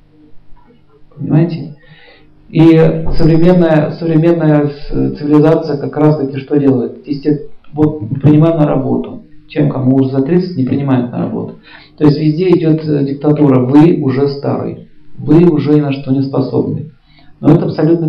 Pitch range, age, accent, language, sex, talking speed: 140-160 Hz, 40-59, native, Russian, male, 135 wpm